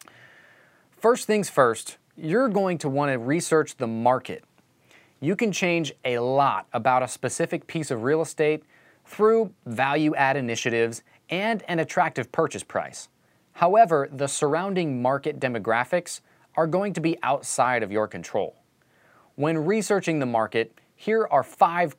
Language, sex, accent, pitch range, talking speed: English, male, American, 135-185 Hz, 140 wpm